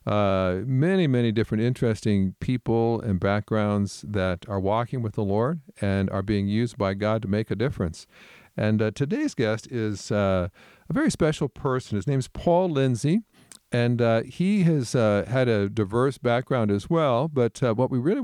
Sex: male